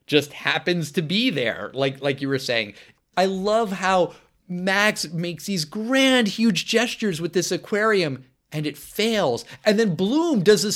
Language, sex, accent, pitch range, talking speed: English, male, American, 135-195 Hz, 165 wpm